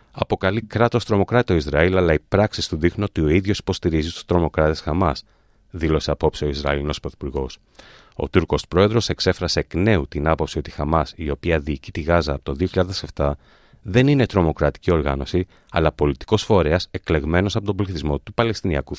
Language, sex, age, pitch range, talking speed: Greek, male, 30-49, 75-105 Hz, 170 wpm